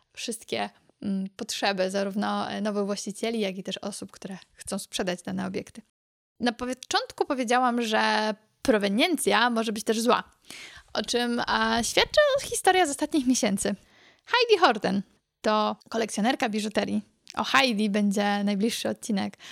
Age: 20-39